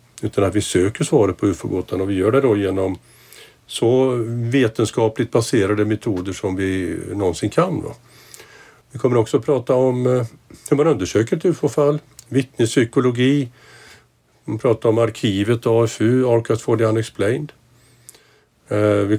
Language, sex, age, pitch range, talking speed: Swedish, male, 50-69, 105-125 Hz, 145 wpm